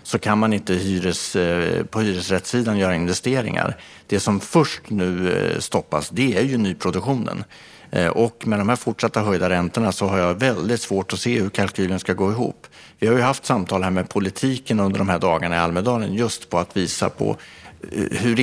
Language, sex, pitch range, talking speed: Swedish, male, 95-120 Hz, 180 wpm